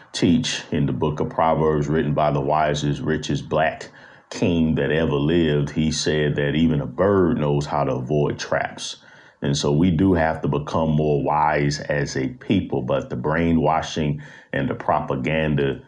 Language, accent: English, American